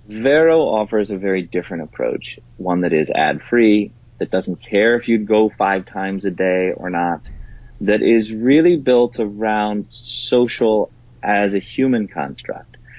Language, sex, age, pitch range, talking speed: English, male, 30-49, 100-120 Hz, 150 wpm